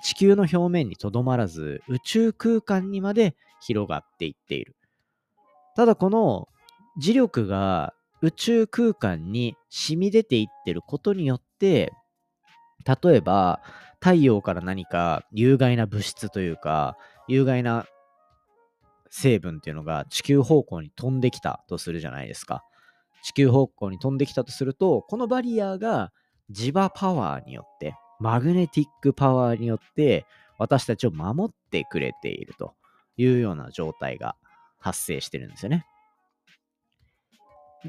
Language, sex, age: Japanese, male, 40-59